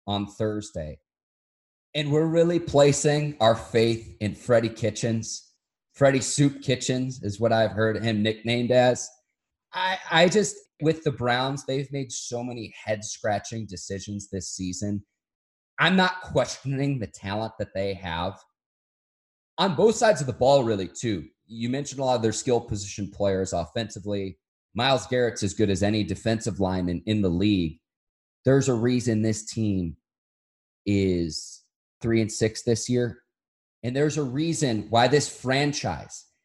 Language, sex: English, male